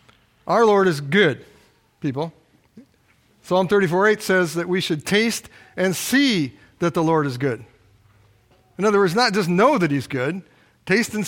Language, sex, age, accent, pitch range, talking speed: English, male, 50-69, American, 140-185 Hz, 160 wpm